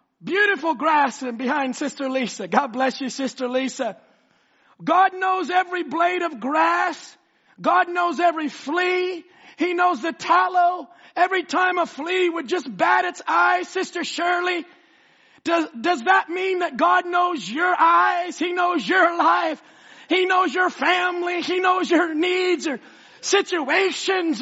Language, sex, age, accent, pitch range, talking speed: English, male, 40-59, American, 315-360 Hz, 145 wpm